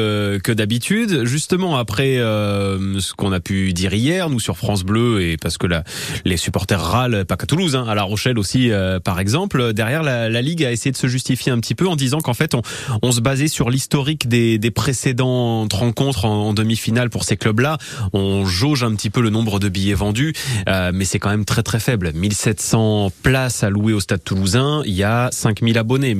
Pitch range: 100-130 Hz